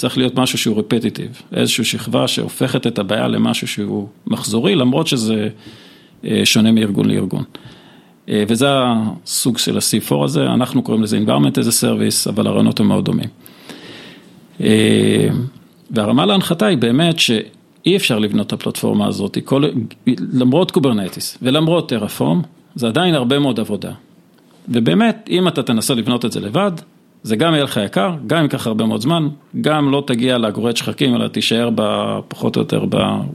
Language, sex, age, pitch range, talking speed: Hebrew, male, 40-59, 115-165 Hz, 155 wpm